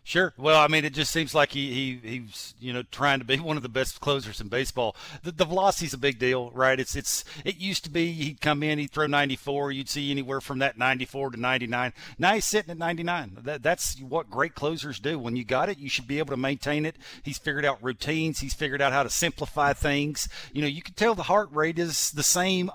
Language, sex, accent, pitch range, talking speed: English, male, American, 135-170 Hz, 235 wpm